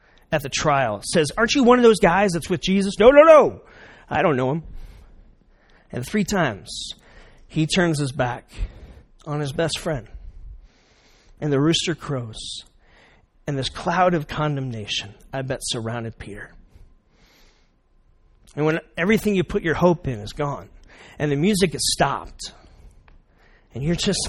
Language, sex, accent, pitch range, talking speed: English, male, American, 110-175 Hz, 155 wpm